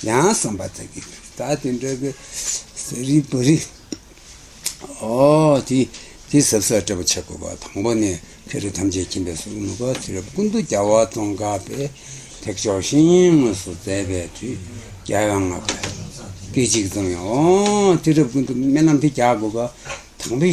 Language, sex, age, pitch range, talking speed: Italian, male, 60-79, 100-155 Hz, 40 wpm